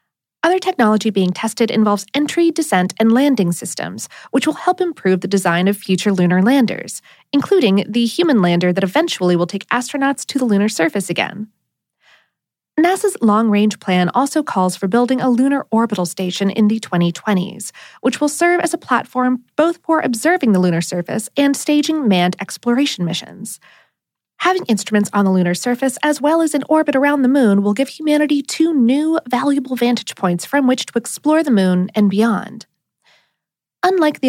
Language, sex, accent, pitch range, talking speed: English, female, American, 195-285 Hz, 170 wpm